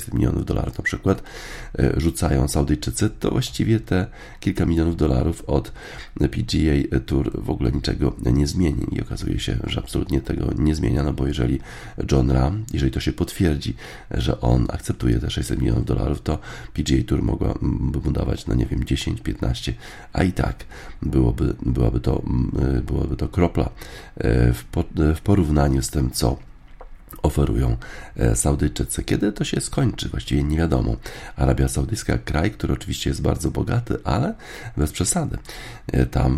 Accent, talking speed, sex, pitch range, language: native, 145 wpm, male, 65-80 Hz, Polish